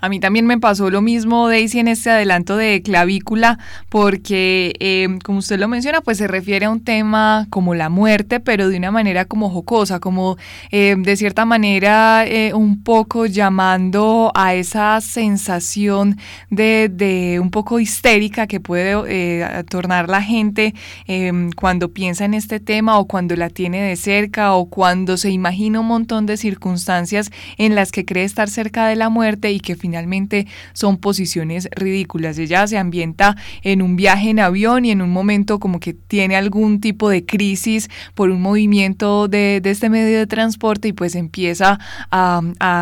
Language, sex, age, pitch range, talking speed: Spanish, female, 20-39, 185-215 Hz, 175 wpm